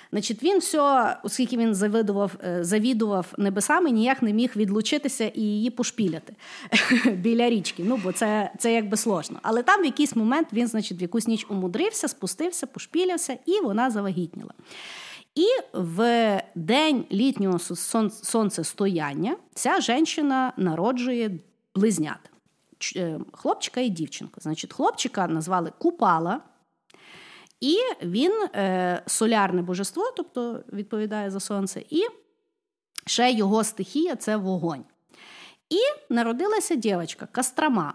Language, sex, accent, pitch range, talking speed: Ukrainian, female, native, 190-275 Hz, 120 wpm